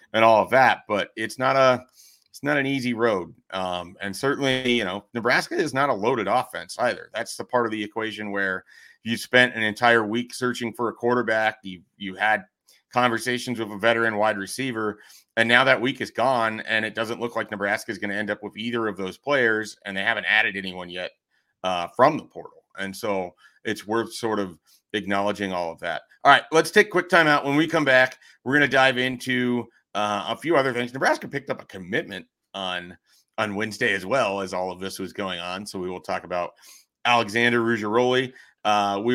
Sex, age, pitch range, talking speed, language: male, 40-59, 105-130 Hz, 215 wpm, English